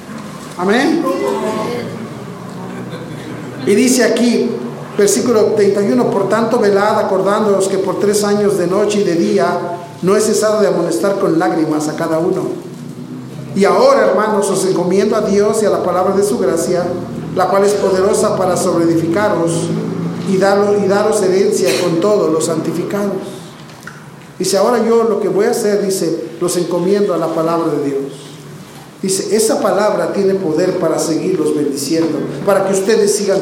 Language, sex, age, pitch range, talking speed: Spanish, male, 40-59, 175-210 Hz, 155 wpm